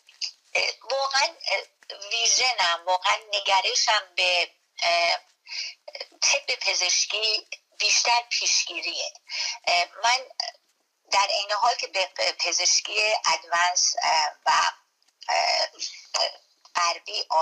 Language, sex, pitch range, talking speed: Persian, female, 180-255 Hz, 65 wpm